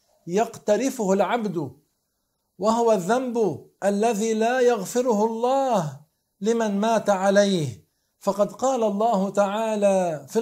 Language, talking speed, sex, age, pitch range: Arabic, 90 wpm, male, 50-69, 185-225 Hz